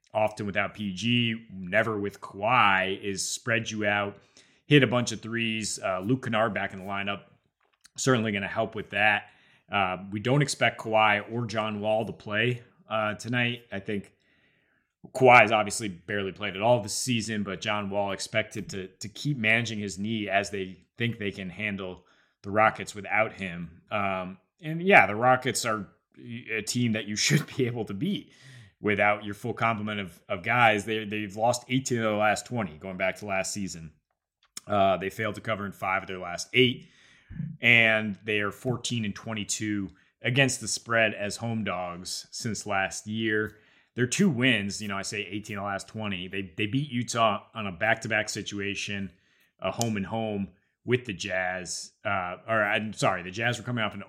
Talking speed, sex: 190 wpm, male